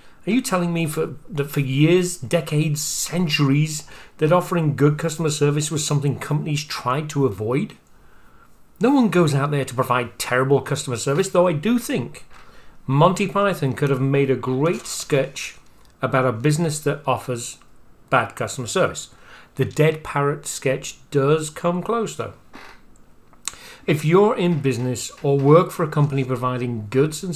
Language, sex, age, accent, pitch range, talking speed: English, male, 40-59, British, 130-165 Hz, 155 wpm